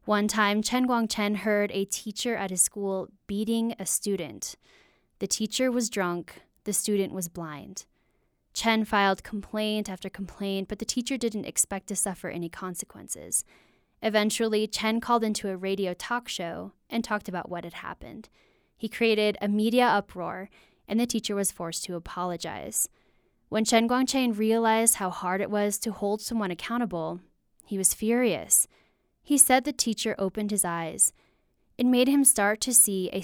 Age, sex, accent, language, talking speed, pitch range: 10-29, female, American, English, 160 wpm, 185-225 Hz